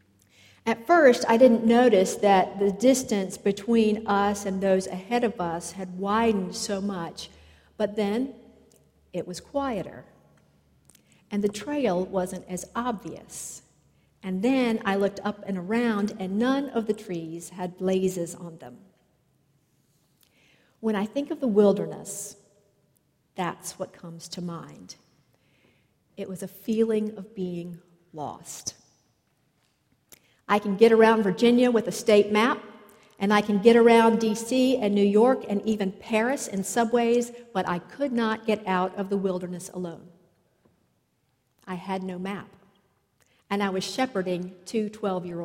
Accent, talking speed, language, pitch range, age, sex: American, 145 wpm, English, 180-225 Hz, 50-69, female